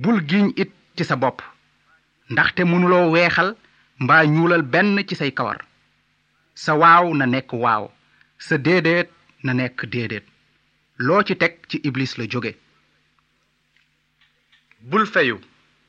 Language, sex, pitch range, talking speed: Italian, male, 125-185 Hz, 130 wpm